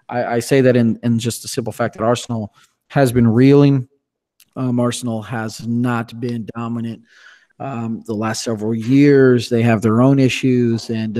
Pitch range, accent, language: 115-135 Hz, American, English